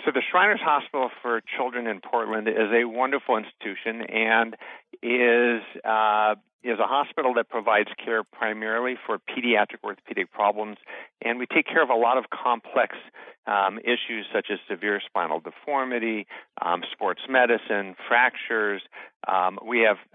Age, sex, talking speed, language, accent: 50-69, male, 145 wpm, English, American